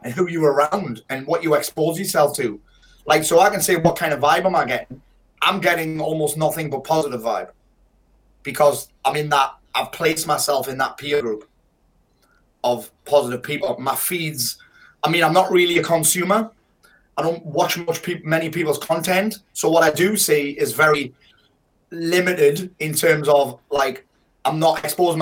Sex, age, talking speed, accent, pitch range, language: male, 30-49, 180 wpm, British, 150-185 Hz, English